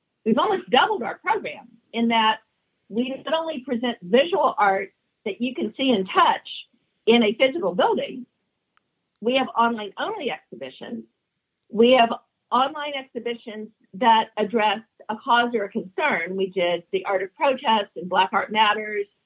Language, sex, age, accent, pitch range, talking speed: English, female, 50-69, American, 190-255 Hz, 150 wpm